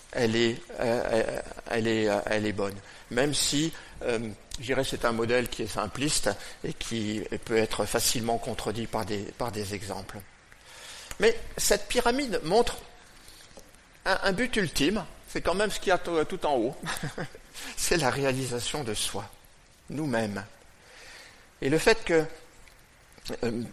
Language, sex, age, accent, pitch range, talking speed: French, male, 50-69, French, 115-170 Hz, 150 wpm